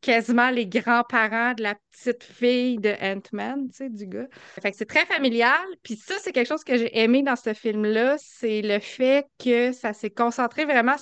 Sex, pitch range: female, 220-270 Hz